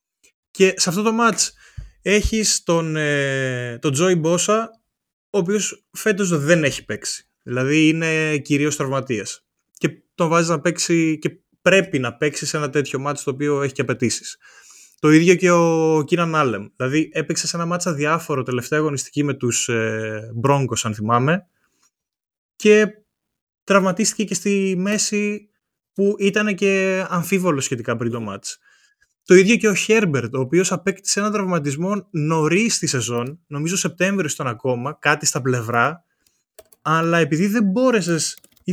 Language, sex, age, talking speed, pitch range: Greek, male, 20-39, 145 wpm, 145-200 Hz